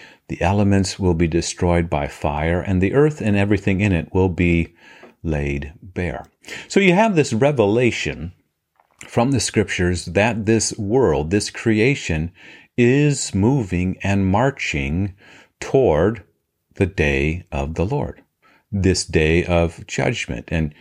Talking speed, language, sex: 135 wpm, English, male